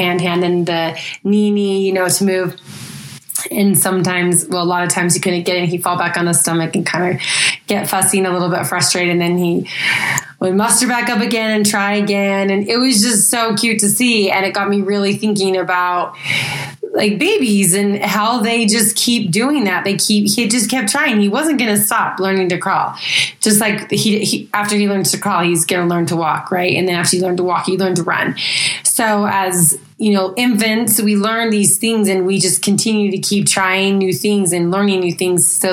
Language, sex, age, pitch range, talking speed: English, female, 20-39, 180-210 Hz, 230 wpm